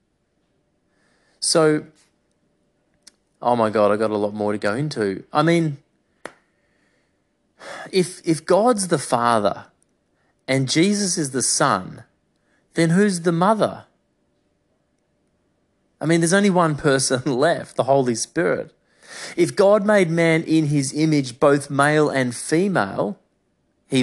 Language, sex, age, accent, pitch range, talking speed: English, male, 30-49, Australian, 130-175 Hz, 125 wpm